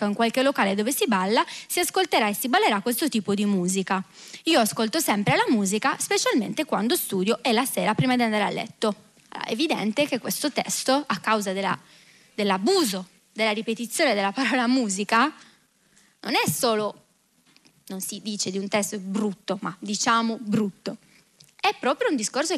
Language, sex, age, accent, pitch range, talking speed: Italian, female, 20-39, native, 205-275 Hz, 160 wpm